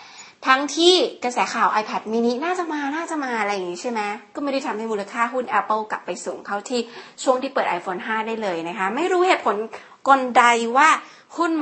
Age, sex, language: 20-39, female, Thai